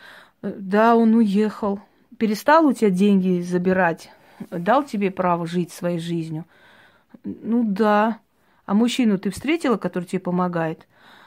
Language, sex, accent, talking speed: Russian, female, native, 120 wpm